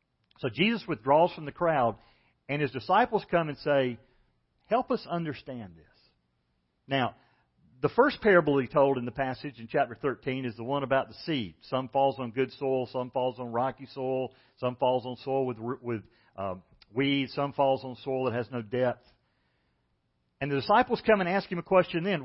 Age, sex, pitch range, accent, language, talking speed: 50-69, male, 115-170 Hz, American, English, 190 wpm